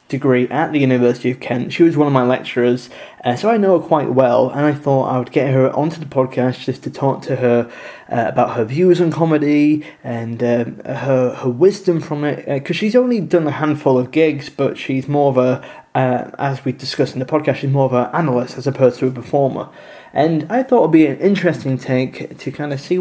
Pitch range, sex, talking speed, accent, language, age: 125-160 Hz, male, 235 wpm, British, English, 20-39